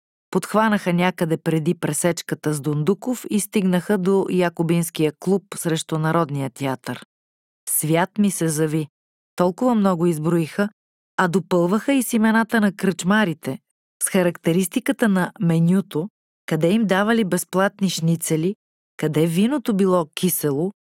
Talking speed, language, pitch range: 120 wpm, Bulgarian, 165-210 Hz